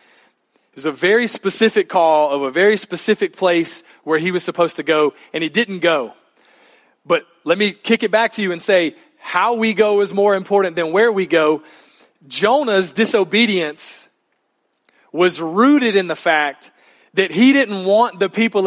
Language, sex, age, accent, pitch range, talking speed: English, male, 30-49, American, 170-225 Hz, 175 wpm